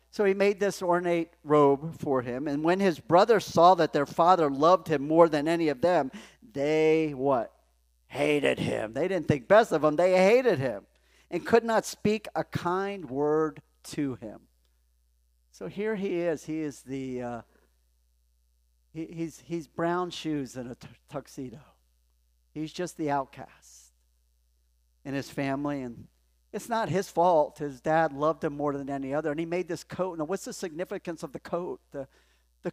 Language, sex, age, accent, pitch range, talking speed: English, male, 50-69, American, 125-170 Hz, 175 wpm